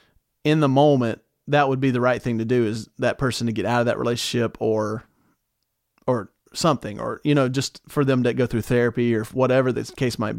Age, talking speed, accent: 30-49, 220 wpm, American